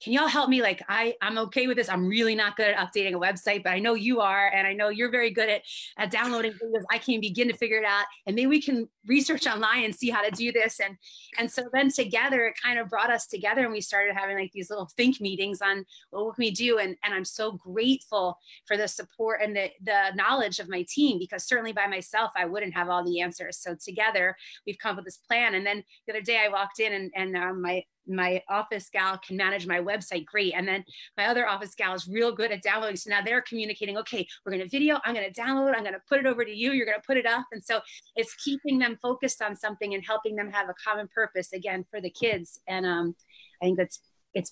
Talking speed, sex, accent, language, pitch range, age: 260 wpm, female, American, English, 190-230 Hz, 30-49